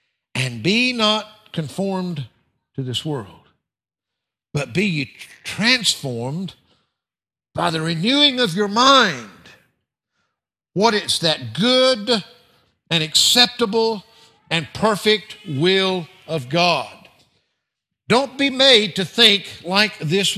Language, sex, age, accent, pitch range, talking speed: English, male, 60-79, American, 130-210 Hz, 100 wpm